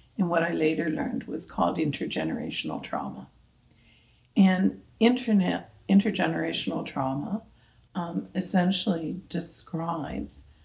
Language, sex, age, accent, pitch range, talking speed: English, female, 60-79, American, 135-195 Hz, 85 wpm